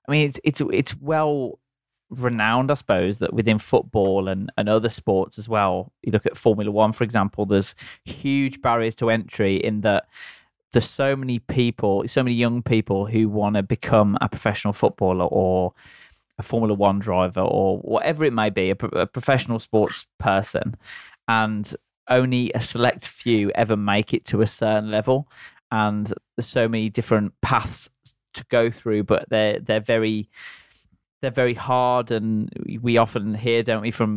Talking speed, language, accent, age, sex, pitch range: 170 wpm, English, British, 20-39, male, 105-120 Hz